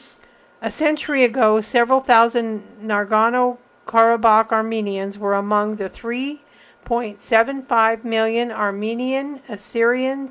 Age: 50-69